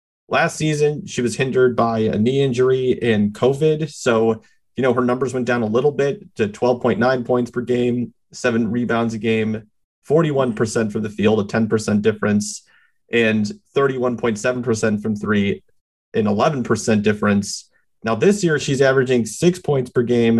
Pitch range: 110-130 Hz